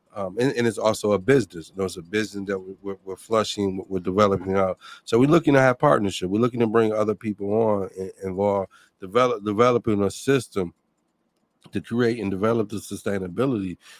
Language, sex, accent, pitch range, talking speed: English, male, American, 95-110 Hz, 190 wpm